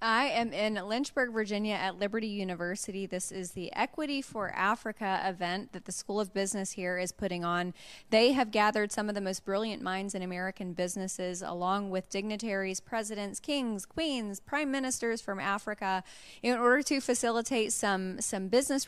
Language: English